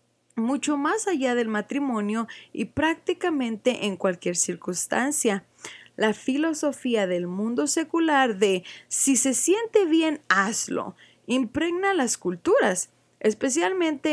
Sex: female